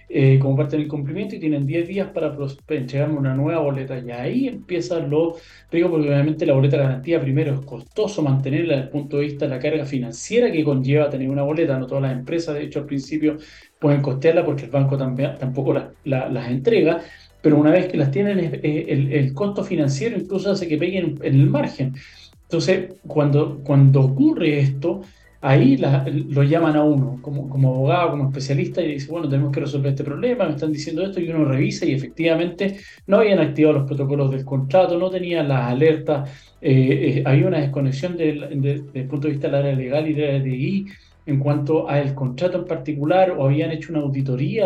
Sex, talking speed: male, 200 wpm